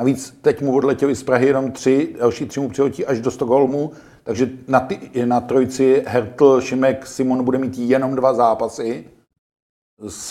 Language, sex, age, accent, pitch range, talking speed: Czech, male, 50-69, native, 120-130 Hz, 170 wpm